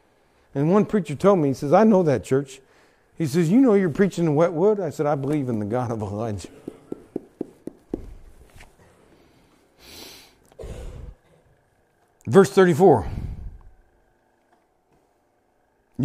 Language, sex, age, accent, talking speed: English, male, 50-69, American, 115 wpm